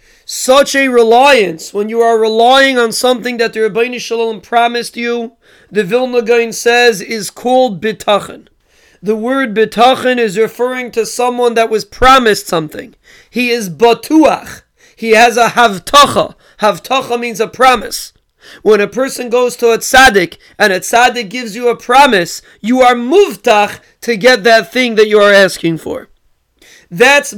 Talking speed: 155 wpm